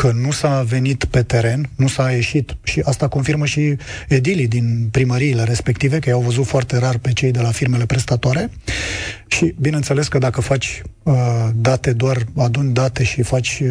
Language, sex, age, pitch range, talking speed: Romanian, male, 30-49, 120-145 Hz, 170 wpm